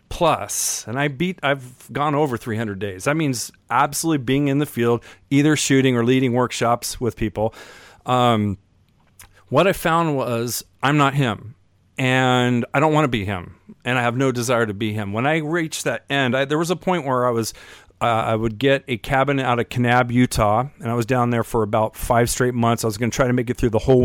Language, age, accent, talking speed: English, 40-59, American, 225 wpm